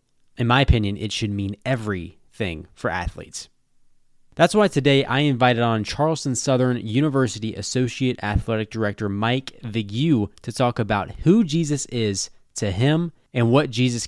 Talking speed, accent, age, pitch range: 145 wpm, American, 20-39, 105-135 Hz